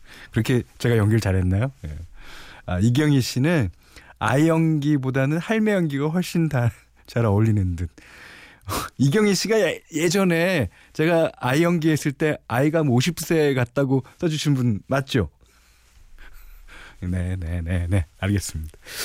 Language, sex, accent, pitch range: Korean, male, native, 95-140 Hz